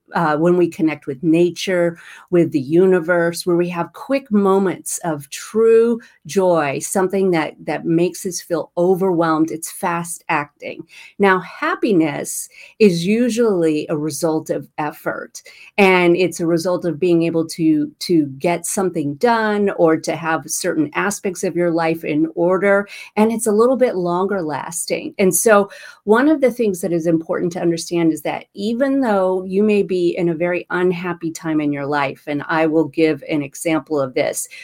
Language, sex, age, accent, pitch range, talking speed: English, female, 40-59, American, 160-200 Hz, 170 wpm